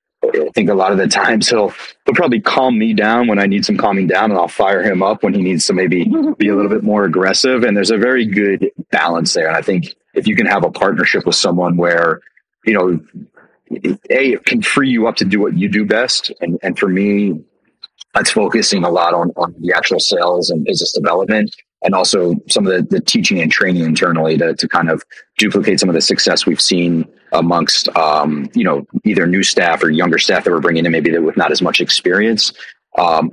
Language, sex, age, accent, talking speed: English, male, 30-49, American, 225 wpm